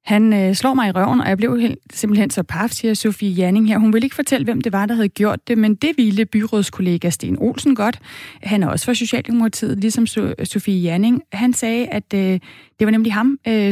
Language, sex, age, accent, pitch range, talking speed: Danish, female, 30-49, native, 195-235 Hz, 225 wpm